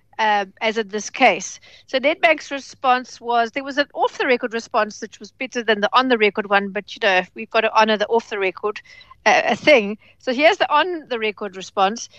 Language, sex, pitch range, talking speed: English, female, 215-270 Hz, 180 wpm